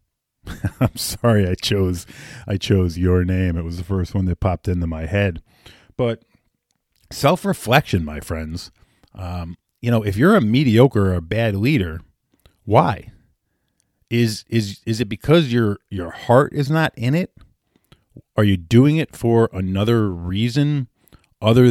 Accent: American